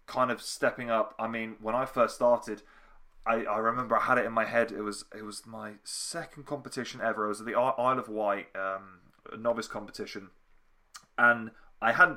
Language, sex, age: English, male, 20-39